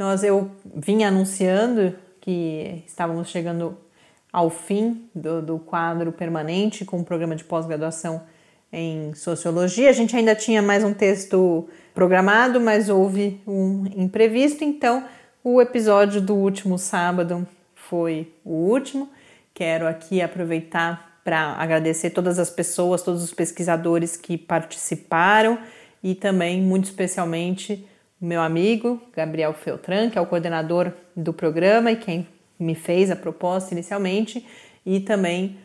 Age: 30-49